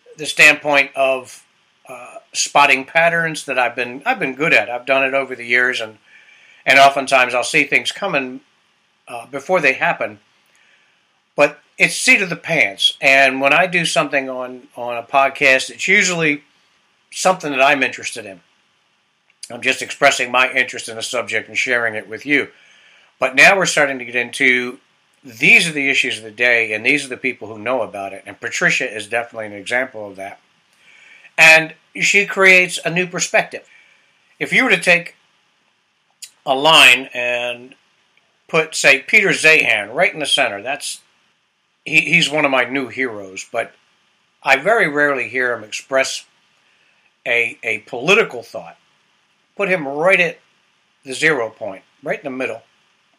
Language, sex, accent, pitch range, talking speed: English, male, American, 120-150 Hz, 165 wpm